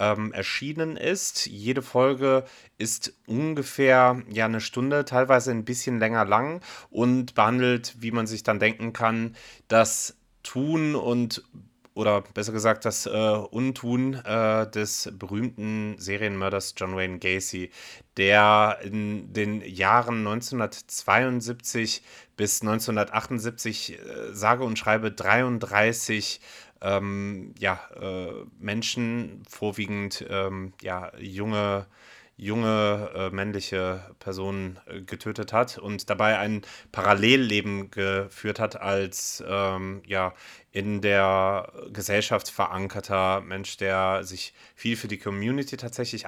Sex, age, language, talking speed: male, 30-49, German, 110 wpm